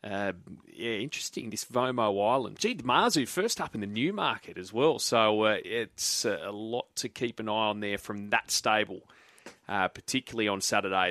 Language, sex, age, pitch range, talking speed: English, male, 30-49, 110-130 Hz, 195 wpm